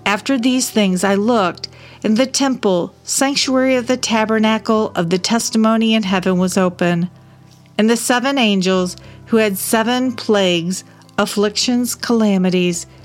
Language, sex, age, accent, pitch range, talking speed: English, female, 50-69, American, 180-230 Hz, 135 wpm